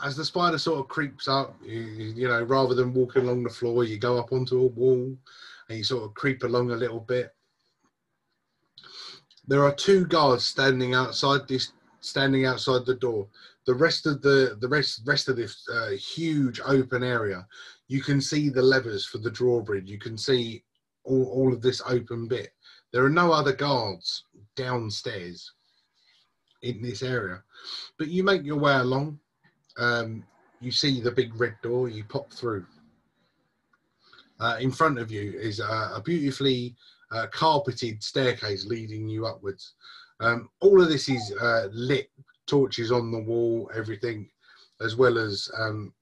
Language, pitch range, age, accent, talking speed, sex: English, 115-135 Hz, 30-49, British, 165 wpm, male